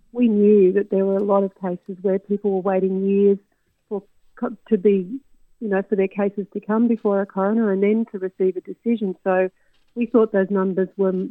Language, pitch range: English, 185-215 Hz